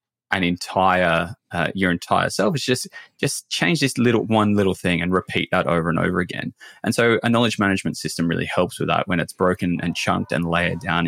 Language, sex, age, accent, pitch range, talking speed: English, male, 20-39, Australian, 90-115 Hz, 215 wpm